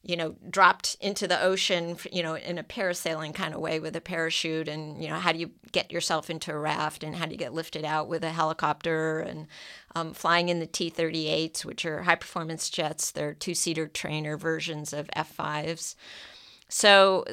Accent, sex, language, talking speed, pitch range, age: American, female, English, 195 wpm, 160-190 Hz, 50-69